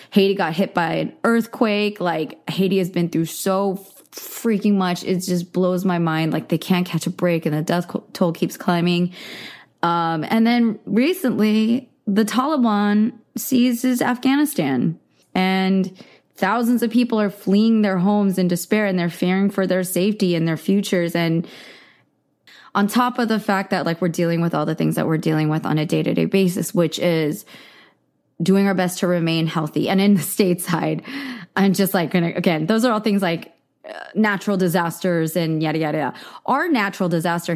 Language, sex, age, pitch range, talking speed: English, female, 20-39, 170-205 Hz, 175 wpm